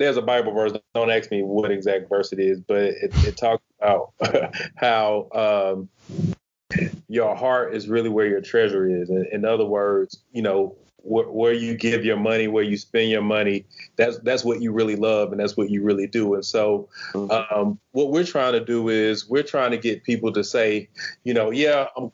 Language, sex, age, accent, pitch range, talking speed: English, male, 30-49, American, 105-125 Hz, 205 wpm